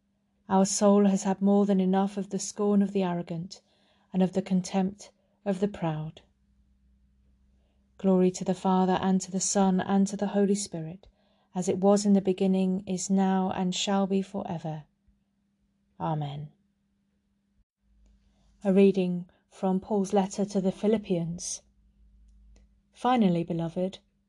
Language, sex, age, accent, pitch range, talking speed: English, female, 30-49, British, 180-205 Hz, 140 wpm